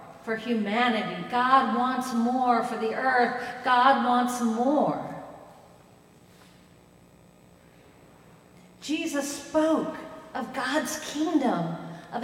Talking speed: 85 wpm